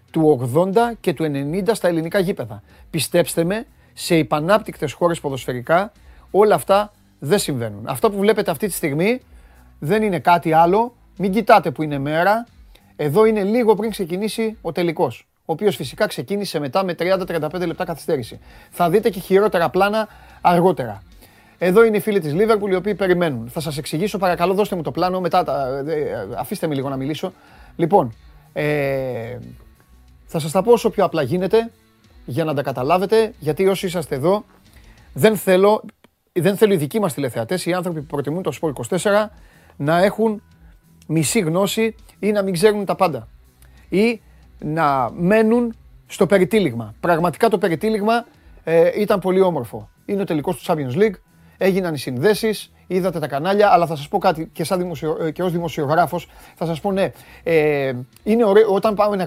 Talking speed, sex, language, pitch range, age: 165 wpm, male, Greek, 150-205 Hz, 30-49